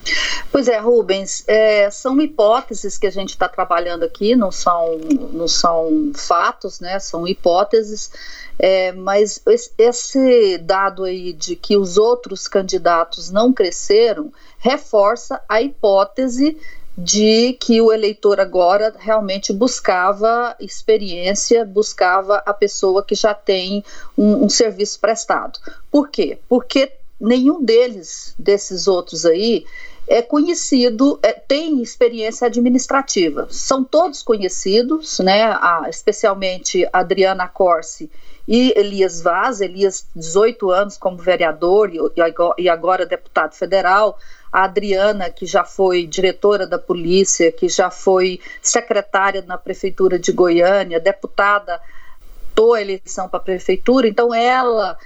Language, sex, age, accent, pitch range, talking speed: Portuguese, female, 40-59, Brazilian, 185-245 Hz, 120 wpm